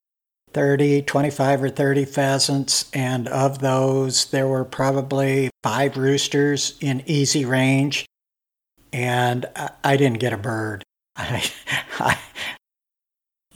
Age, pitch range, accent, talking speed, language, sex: 60-79, 130-145 Hz, American, 100 wpm, English, male